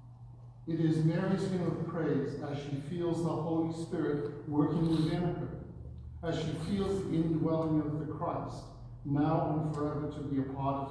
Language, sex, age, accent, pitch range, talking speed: English, male, 50-69, American, 130-155 Hz, 170 wpm